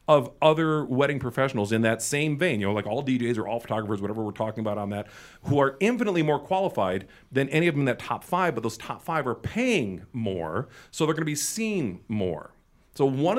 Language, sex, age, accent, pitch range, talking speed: English, male, 50-69, American, 115-150 Hz, 225 wpm